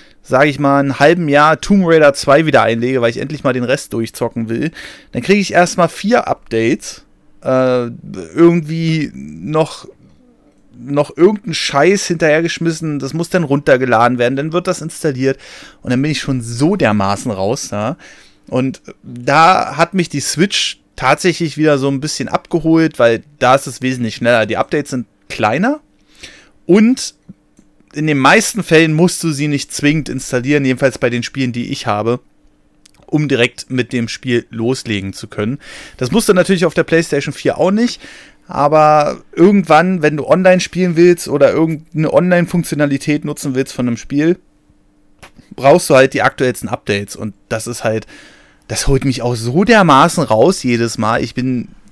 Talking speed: 165 wpm